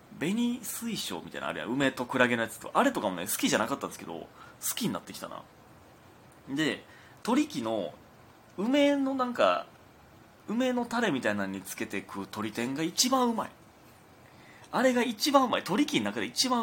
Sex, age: male, 30-49